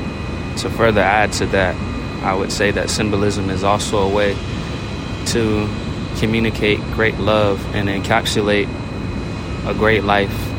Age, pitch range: 20-39, 100-110 Hz